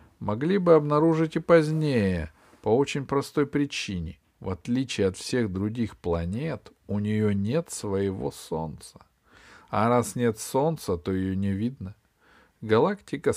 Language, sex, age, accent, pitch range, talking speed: Russian, male, 40-59, native, 95-145 Hz, 130 wpm